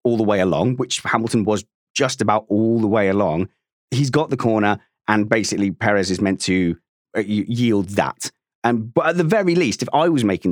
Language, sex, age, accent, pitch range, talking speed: English, male, 30-49, British, 105-135 Hz, 200 wpm